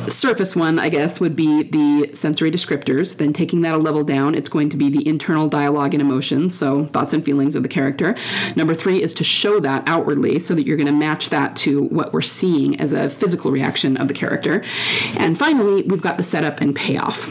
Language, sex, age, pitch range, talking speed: English, female, 30-49, 150-185 Hz, 220 wpm